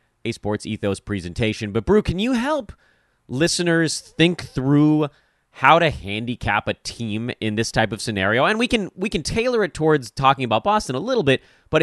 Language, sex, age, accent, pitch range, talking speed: English, male, 30-49, American, 100-140 Hz, 190 wpm